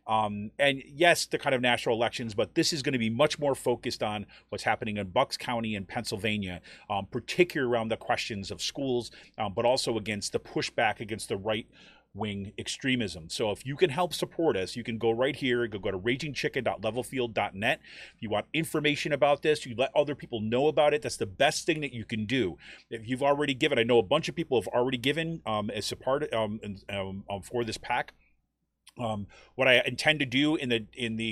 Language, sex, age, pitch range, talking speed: English, male, 30-49, 110-140 Hz, 210 wpm